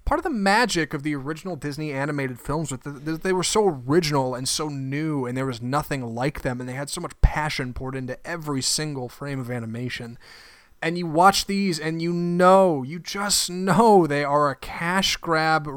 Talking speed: 200 wpm